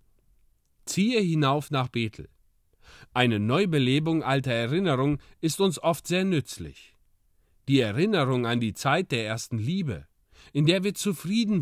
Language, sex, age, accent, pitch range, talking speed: German, male, 40-59, German, 115-175 Hz, 130 wpm